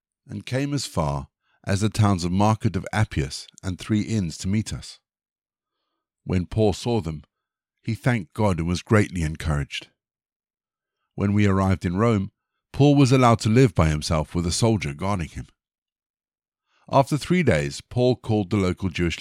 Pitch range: 90-120 Hz